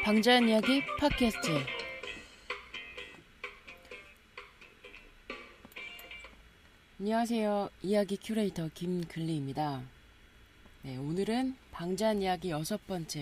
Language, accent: Korean, native